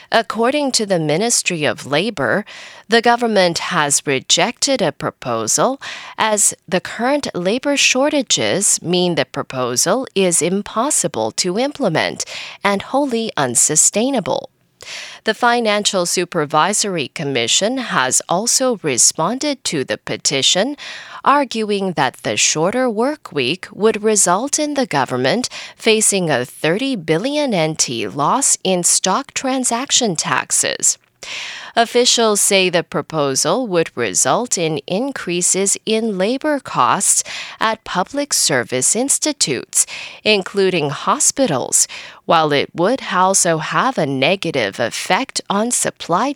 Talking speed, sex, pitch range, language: 110 wpm, female, 165-250 Hz, English